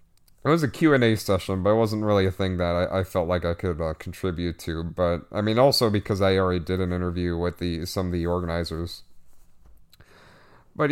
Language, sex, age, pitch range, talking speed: English, male, 30-49, 90-115 Hz, 220 wpm